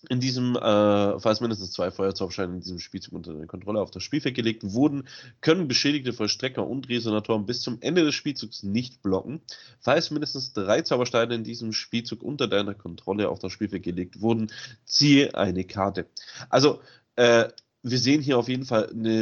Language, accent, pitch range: German, German, 100-120 Hz